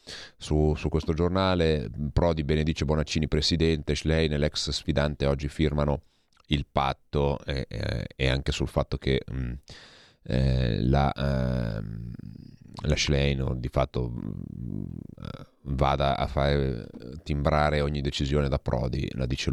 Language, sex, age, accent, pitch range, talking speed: Italian, male, 30-49, native, 70-80 Hz, 130 wpm